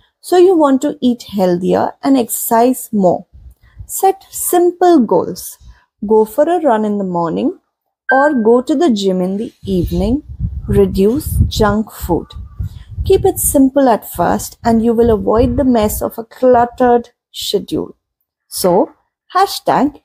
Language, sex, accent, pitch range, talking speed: English, female, Indian, 210-285 Hz, 140 wpm